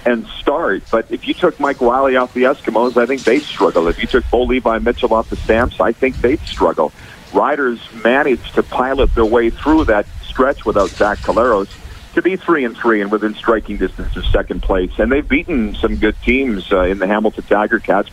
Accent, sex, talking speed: American, male, 210 wpm